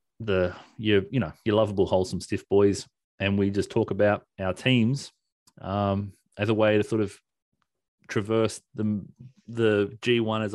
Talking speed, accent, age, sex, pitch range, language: 160 wpm, Australian, 30-49, male, 100-120 Hz, English